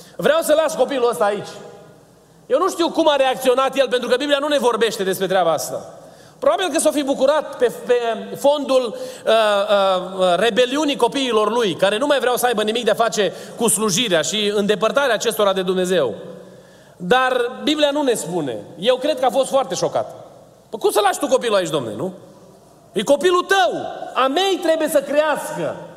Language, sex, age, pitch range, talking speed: Romanian, male, 30-49, 220-290 Hz, 185 wpm